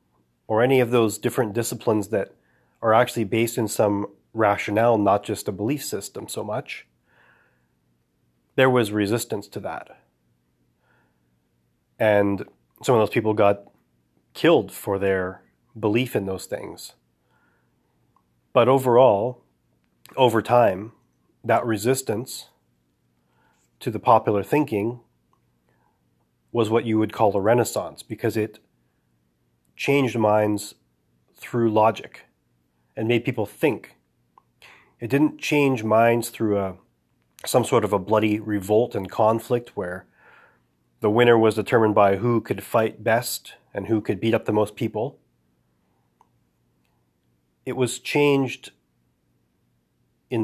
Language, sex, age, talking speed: English, male, 30-49, 120 wpm